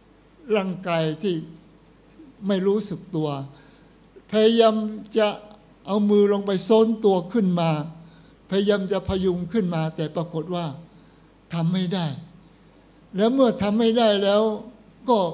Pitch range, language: 165-210 Hz, Thai